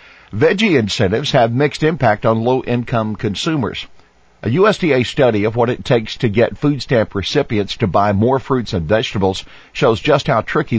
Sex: male